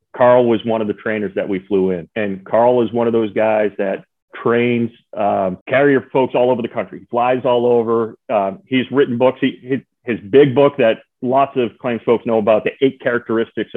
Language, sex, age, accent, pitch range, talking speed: English, male, 40-59, American, 105-130 Hz, 205 wpm